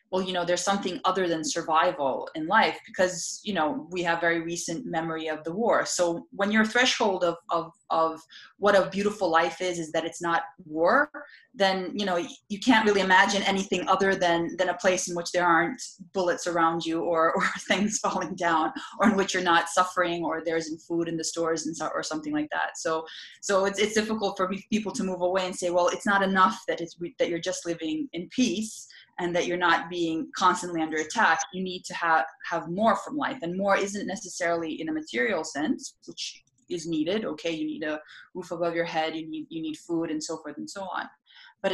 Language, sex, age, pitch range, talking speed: English, female, 20-39, 165-200 Hz, 225 wpm